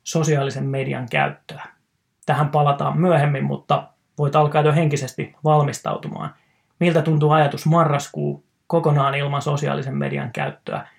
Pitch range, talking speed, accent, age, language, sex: 140-165 Hz, 115 wpm, native, 30-49, Finnish, male